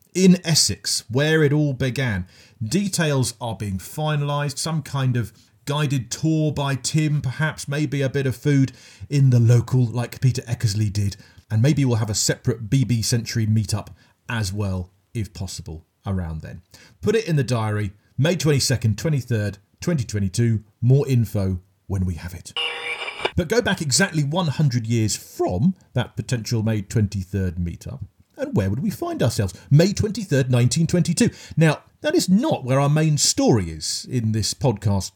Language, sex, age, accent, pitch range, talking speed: English, male, 40-59, British, 105-150 Hz, 155 wpm